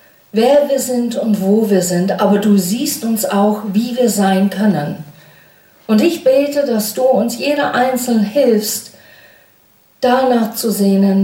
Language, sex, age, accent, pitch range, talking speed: German, female, 50-69, German, 175-240 Hz, 150 wpm